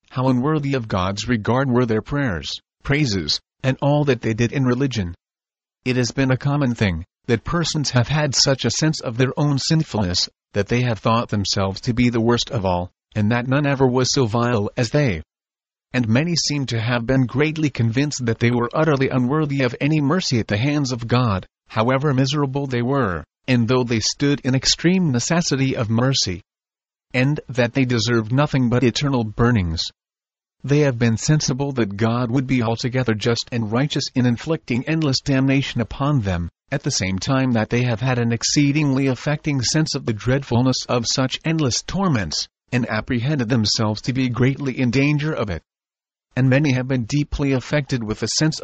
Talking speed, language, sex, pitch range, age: 185 wpm, English, male, 115-140 Hz, 40-59